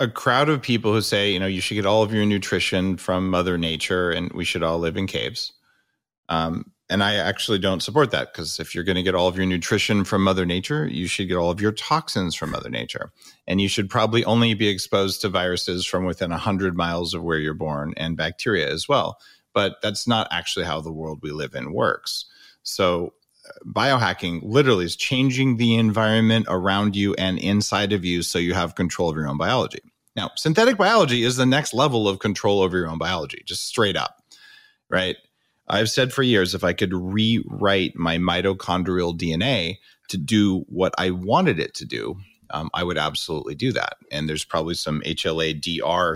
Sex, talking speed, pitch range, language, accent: male, 205 wpm, 85-105 Hz, English, American